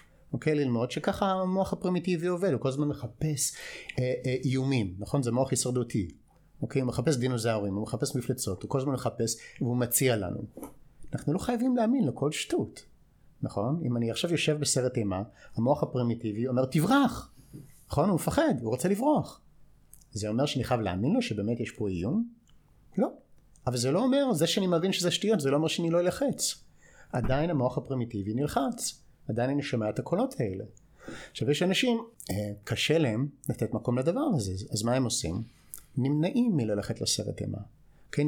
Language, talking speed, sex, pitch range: Hebrew, 145 wpm, male, 115-160 Hz